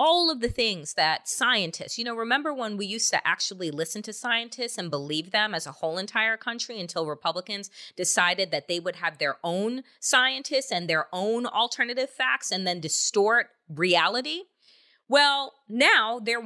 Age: 30-49